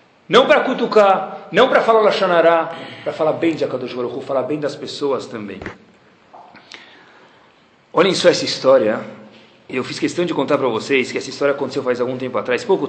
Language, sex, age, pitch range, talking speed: Portuguese, male, 40-59, 125-205 Hz, 170 wpm